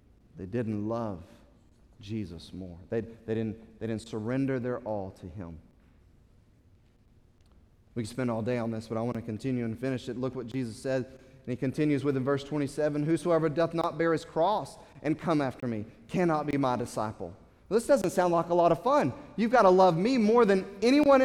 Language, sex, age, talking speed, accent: English, male, 30-49, 205 wpm, American